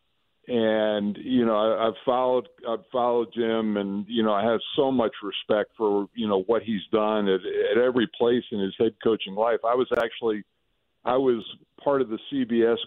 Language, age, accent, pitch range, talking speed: English, 50-69, American, 105-125 Hz, 190 wpm